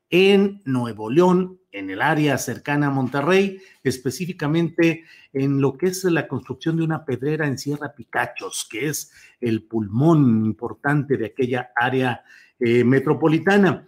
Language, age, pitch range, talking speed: Spanish, 50-69, 125-165 Hz, 140 wpm